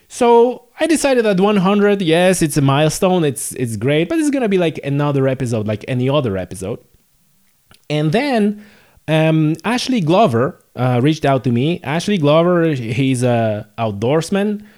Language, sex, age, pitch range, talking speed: English, male, 20-39, 140-180 Hz, 155 wpm